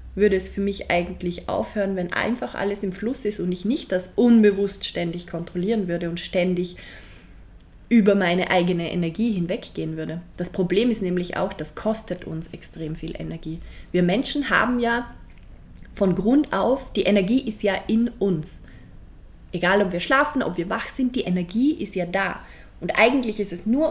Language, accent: German, German